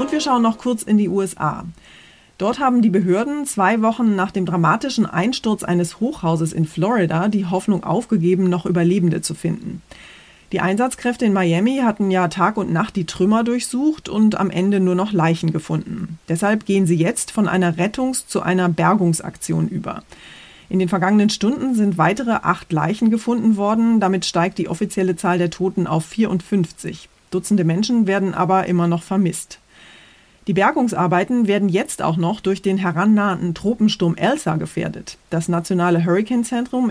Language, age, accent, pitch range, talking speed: German, 30-49, German, 170-215 Hz, 165 wpm